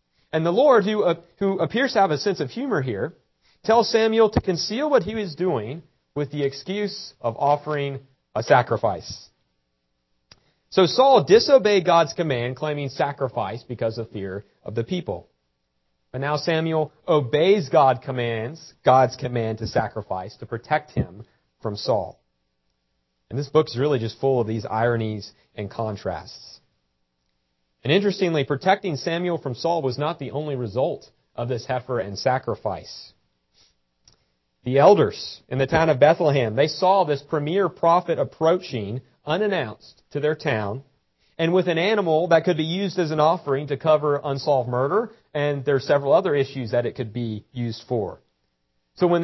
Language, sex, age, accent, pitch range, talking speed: English, male, 40-59, American, 115-170 Hz, 155 wpm